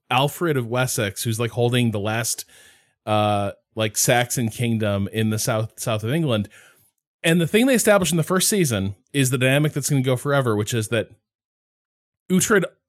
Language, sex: English, male